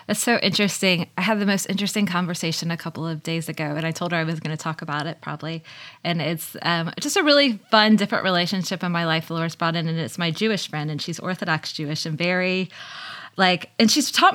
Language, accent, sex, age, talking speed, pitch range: English, American, female, 20-39, 235 wpm, 180-220 Hz